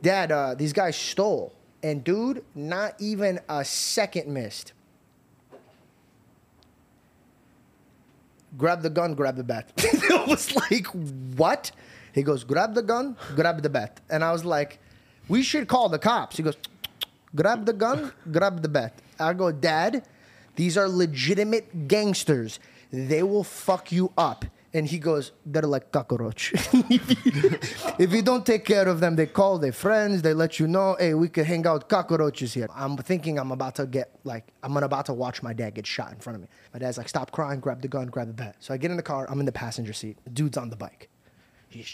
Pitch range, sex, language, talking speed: 135-195 Hz, male, English, 195 wpm